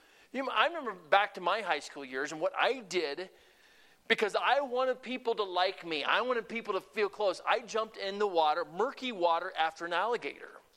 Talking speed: 195 wpm